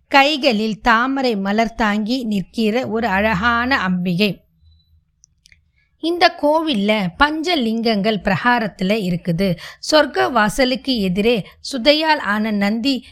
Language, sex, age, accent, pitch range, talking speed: Tamil, female, 20-39, native, 205-260 Hz, 85 wpm